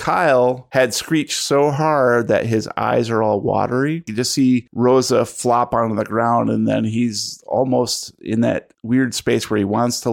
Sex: male